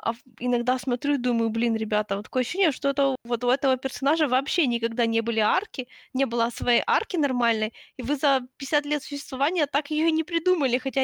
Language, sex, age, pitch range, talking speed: Ukrainian, female, 20-39, 225-275 Hz, 205 wpm